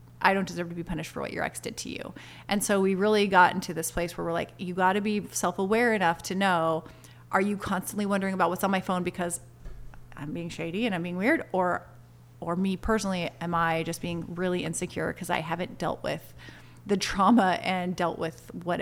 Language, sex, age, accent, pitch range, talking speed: English, female, 30-49, American, 175-220 Hz, 225 wpm